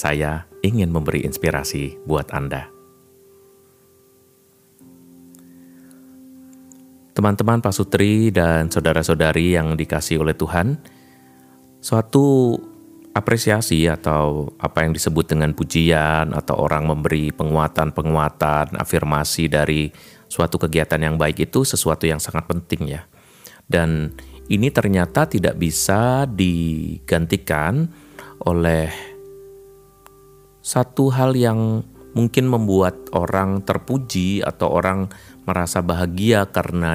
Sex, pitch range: male, 80-105 Hz